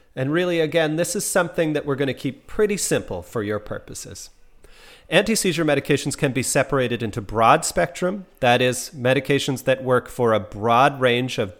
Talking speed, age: 175 wpm, 40-59